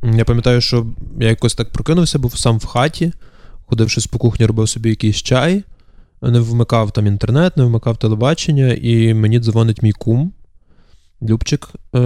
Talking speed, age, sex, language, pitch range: 155 wpm, 20-39, male, Ukrainian, 105-120 Hz